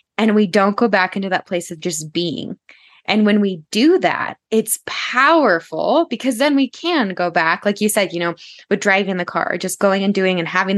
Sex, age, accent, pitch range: female, 10-29, American, 175-220 Hz